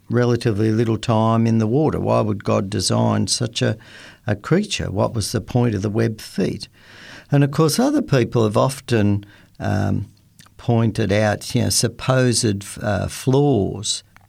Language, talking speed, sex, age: English, 155 wpm, male, 60-79